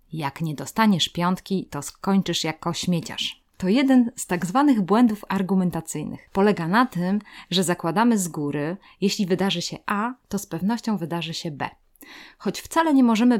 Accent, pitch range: native, 170-210 Hz